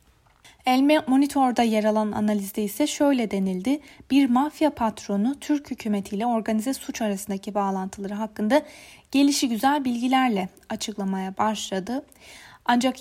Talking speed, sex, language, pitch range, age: 105 wpm, female, Turkish, 210-265 Hz, 30-49